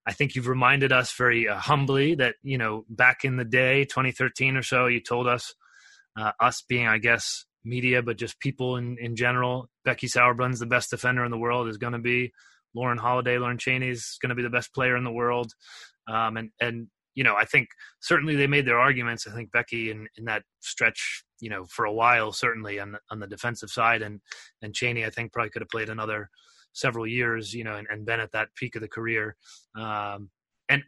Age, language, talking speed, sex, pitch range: 30-49, English, 220 wpm, male, 110-130 Hz